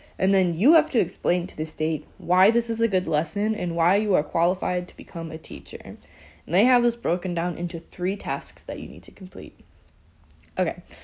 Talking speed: 210 wpm